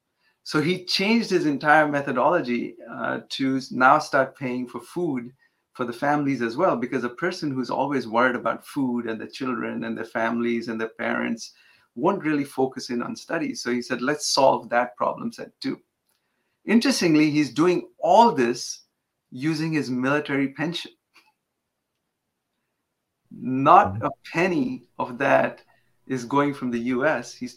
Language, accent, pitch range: English, Indian, 120-150 Hz